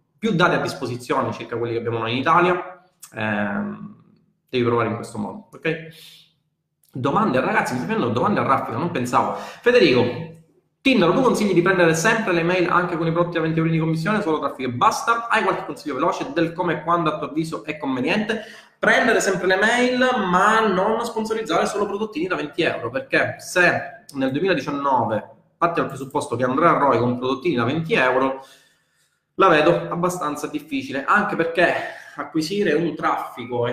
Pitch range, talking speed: 120-175 Hz, 180 wpm